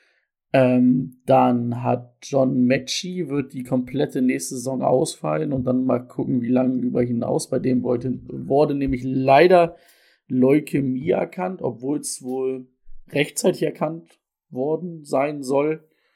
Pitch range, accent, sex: 125-145 Hz, German, male